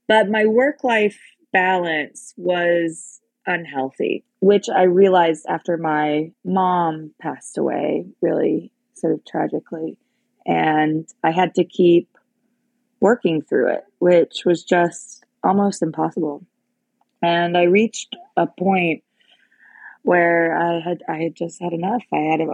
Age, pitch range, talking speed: 20-39, 165-205 Hz, 120 wpm